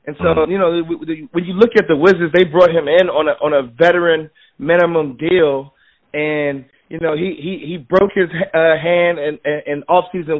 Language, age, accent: English, 30-49, American